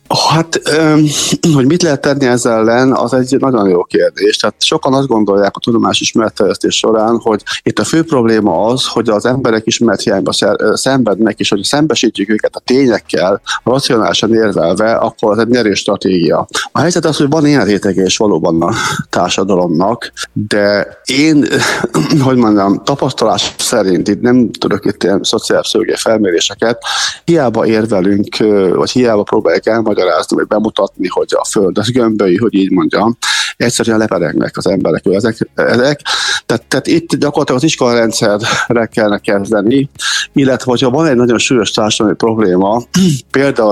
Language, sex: Hungarian, male